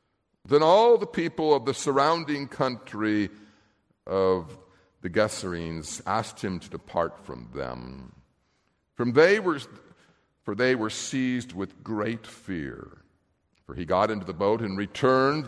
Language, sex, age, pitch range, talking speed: English, male, 60-79, 90-130 Hz, 125 wpm